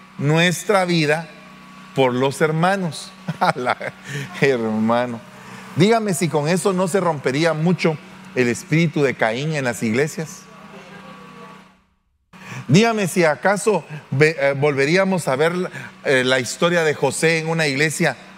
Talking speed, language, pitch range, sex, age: 110 wpm, Spanish, 145-195 Hz, male, 40-59